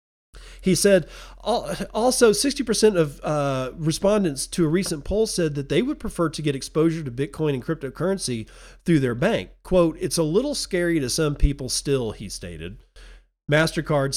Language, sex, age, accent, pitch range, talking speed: English, male, 40-59, American, 120-155 Hz, 160 wpm